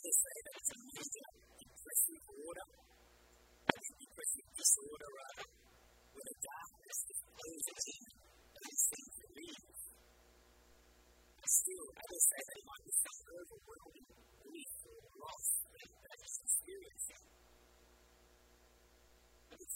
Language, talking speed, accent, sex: English, 95 wpm, American, female